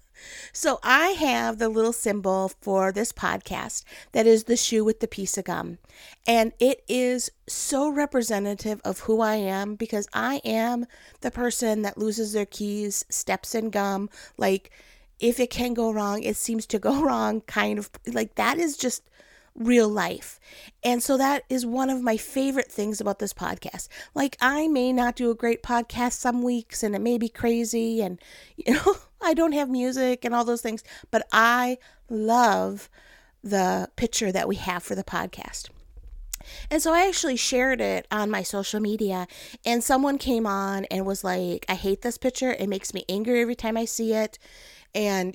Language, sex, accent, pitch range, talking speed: English, female, American, 205-260 Hz, 185 wpm